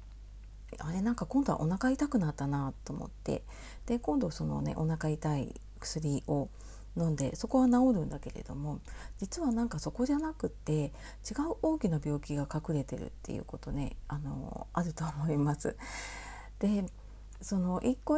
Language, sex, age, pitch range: Japanese, female, 40-59, 140-195 Hz